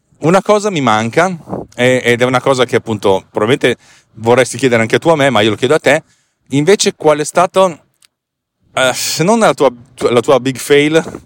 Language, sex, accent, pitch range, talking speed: Italian, male, native, 105-140 Hz, 190 wpm